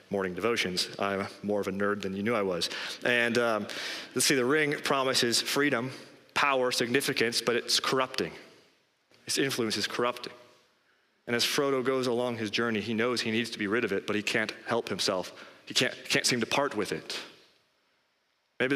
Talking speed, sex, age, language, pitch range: 190 wpm, male, 30-49, English, 105-125 Hz